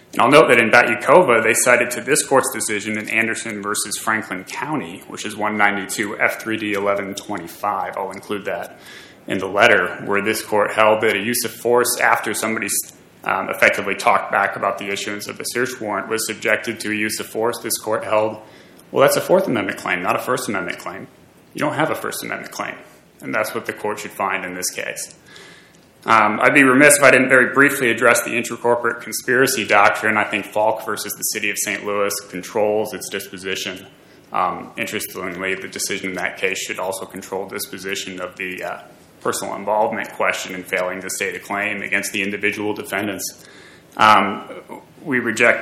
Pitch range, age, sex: 100-115 Hz, 30-49, male